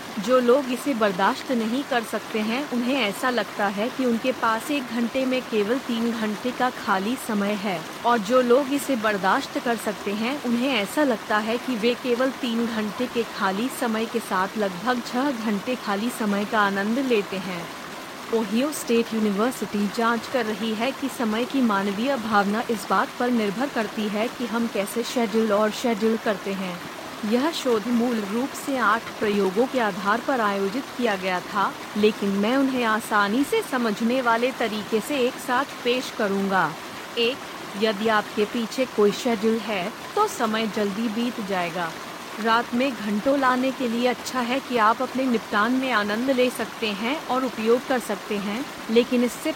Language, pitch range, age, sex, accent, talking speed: Hindi, 210-255 Hz, 30-49, female, native, 175 wpm